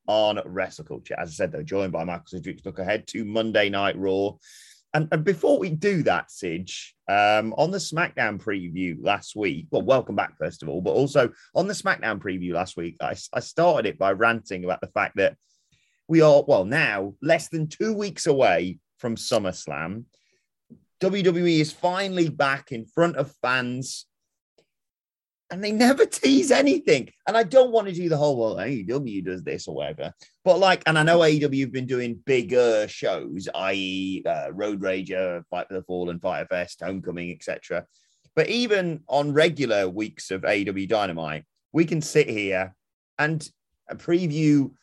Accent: British